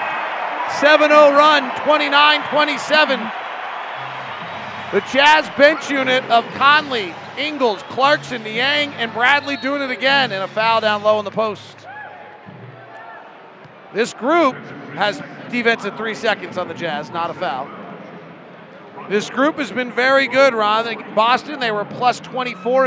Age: 40-59